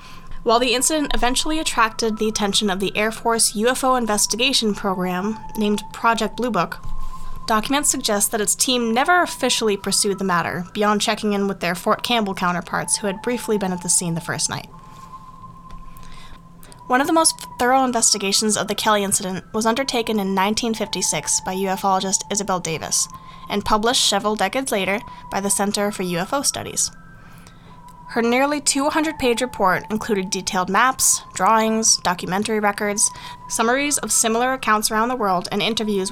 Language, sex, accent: English, female, American